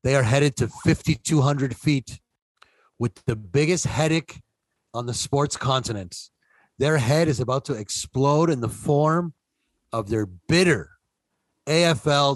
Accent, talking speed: American, 130 wpm